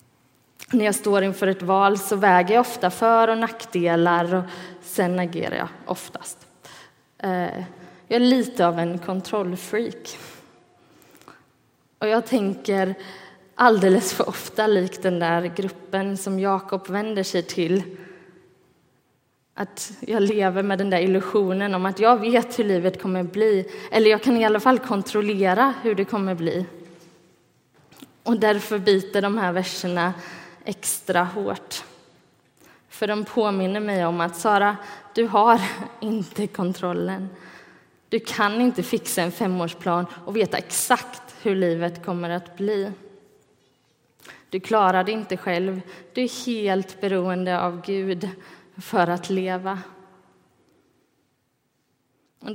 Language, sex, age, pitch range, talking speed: Swedish, female, 20-39, 180-210 Hz, 130 wpm